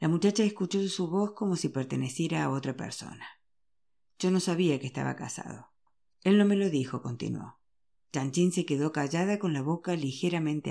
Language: Spanish